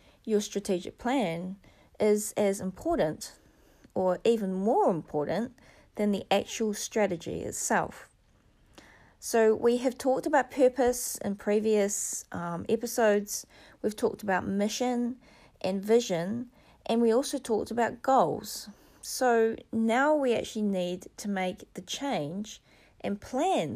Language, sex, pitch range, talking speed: English, female, 195-250 Hz, 120 wpm